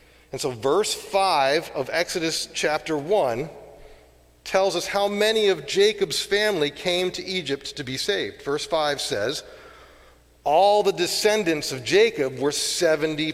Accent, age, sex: American, 40-59, male